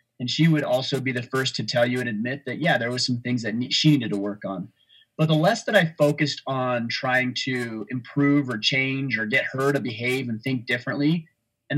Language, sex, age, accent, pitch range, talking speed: English, male, 30-49, American, 120-150 Hz, 230 wpm